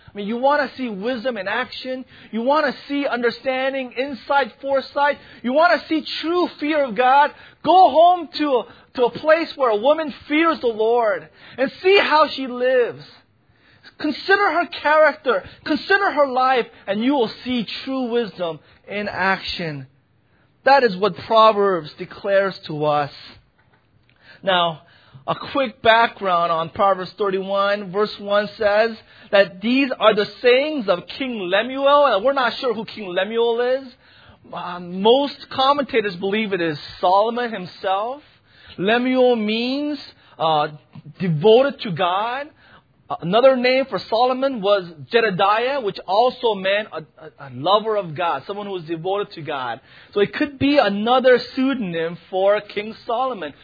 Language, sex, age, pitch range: English, male, 30-49, 195-275 Hz